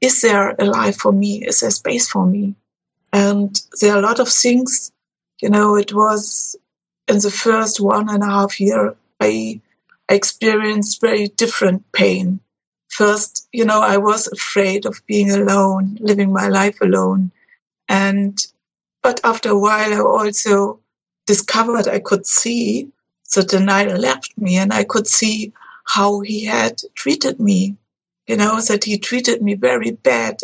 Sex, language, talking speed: female, English, 160 wpm